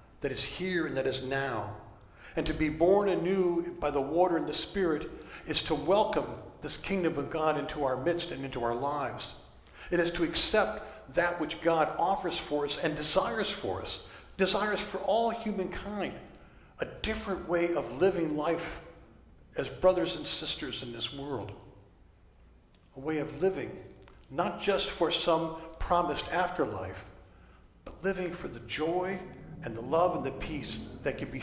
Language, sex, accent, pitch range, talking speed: English, male, American, 135-175 Hz, 165 wpm